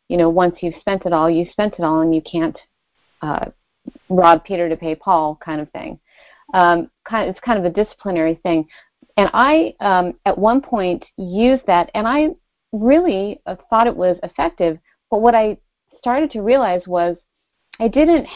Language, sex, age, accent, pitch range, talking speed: English, female, 40-59, American, 175-230 Hz, 185 wpm